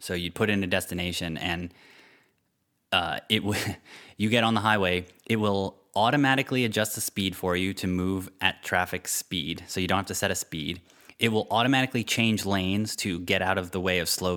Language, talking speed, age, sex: English, 205 wpm, 20-39, male